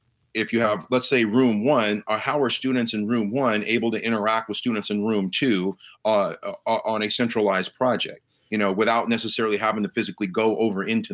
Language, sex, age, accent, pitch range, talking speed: English, male, 40-59, American, 100-115 Hz, 200 wpm